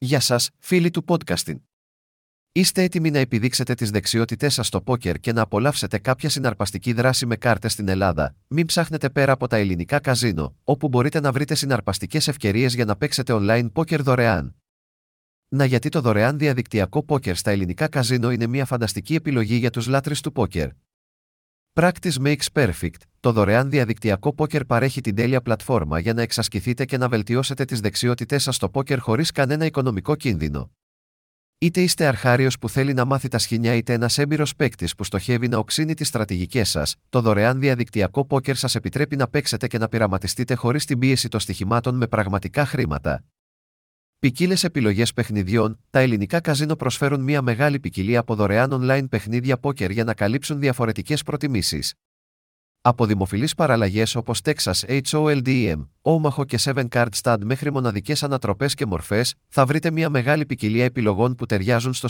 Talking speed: 165 wpm